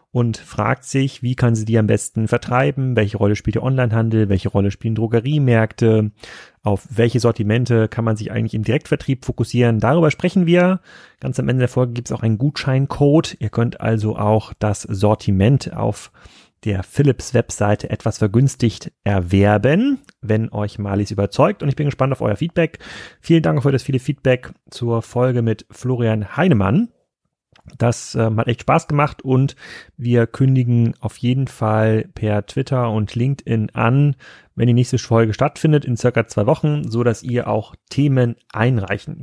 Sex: male